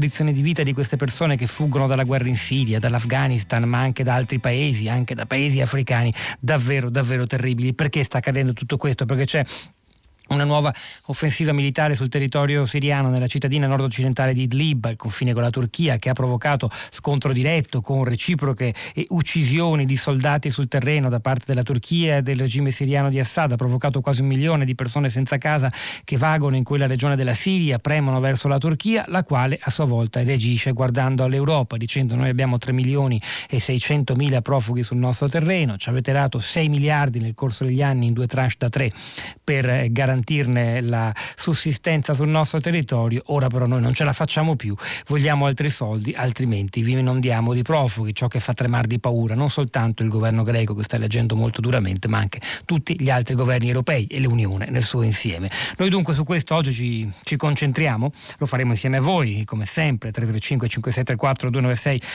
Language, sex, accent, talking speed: Italian, male, native, 185 wpm